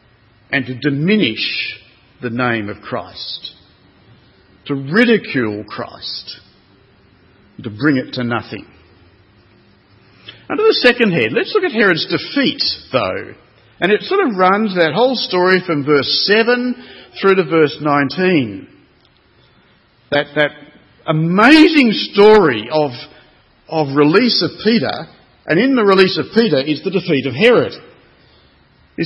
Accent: Australian